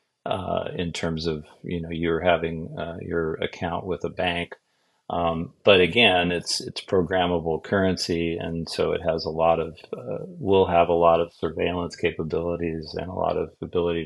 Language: English